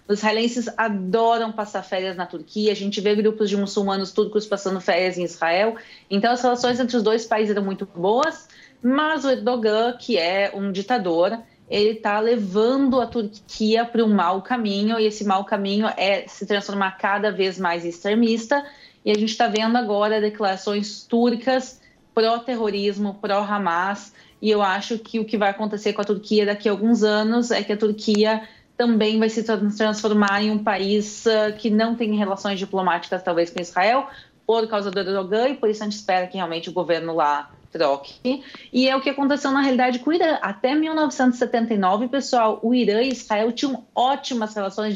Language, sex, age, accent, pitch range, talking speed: Portuguese, female, 30-49, Brazilian, 200-235 Hz, 180 wpm